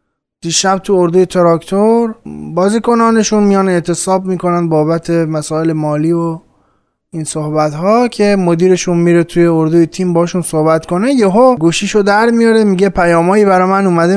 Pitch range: 145-190 Hz